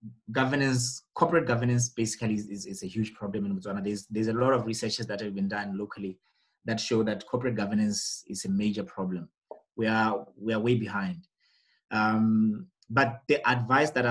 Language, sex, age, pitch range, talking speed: English, male, 20-39, 105-130 Hz, 185 wpm